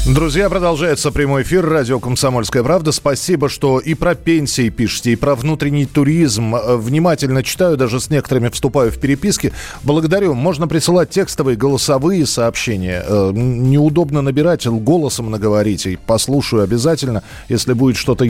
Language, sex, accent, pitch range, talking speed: Russian, male, native, 110-150 Hz, 130 wpm